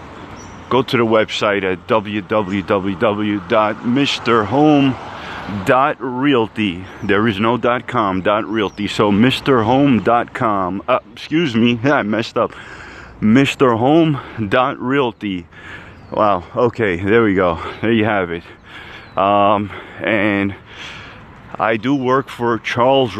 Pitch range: 100-120 Hz